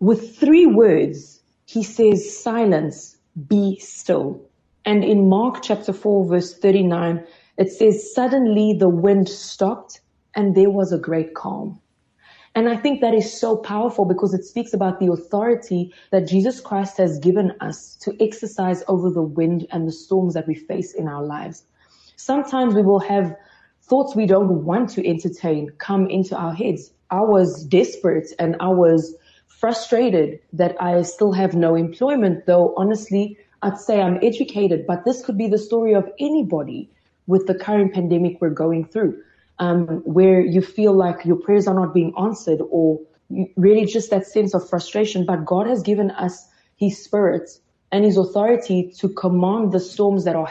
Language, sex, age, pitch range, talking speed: English, female, 20-39, 175-210 Hz, 170 wpm